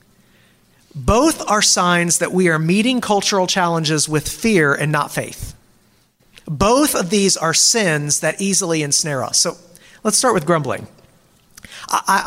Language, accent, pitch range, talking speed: English, American, 165-215 Hz, 140 wpm